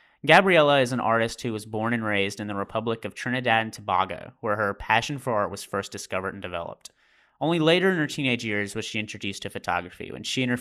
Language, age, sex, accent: English, 30-49, male, American